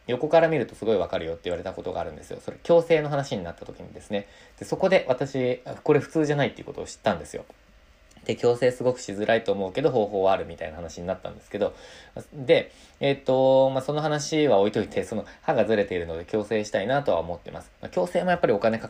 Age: 20-39